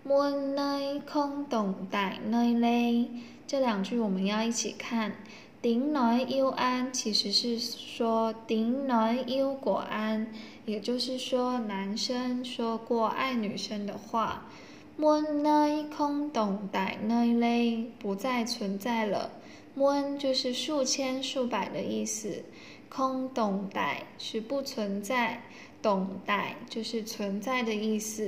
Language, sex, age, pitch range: Vietnamese, female, 10-29, 220-260 Hz